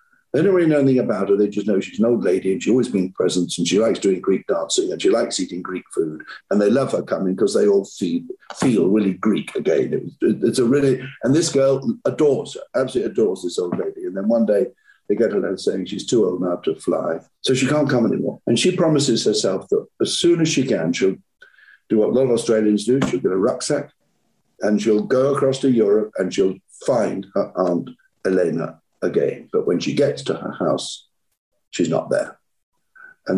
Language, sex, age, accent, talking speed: English, male, 50-69, British, 225 wpm